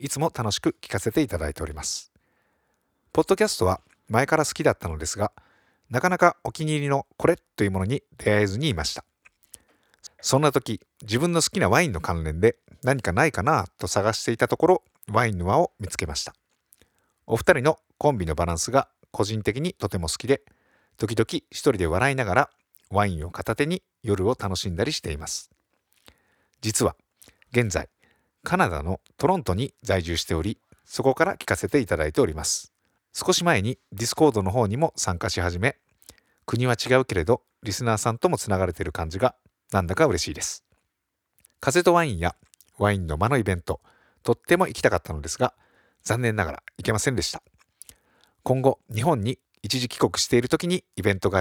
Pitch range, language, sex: 95-140 Hz, Japanese, male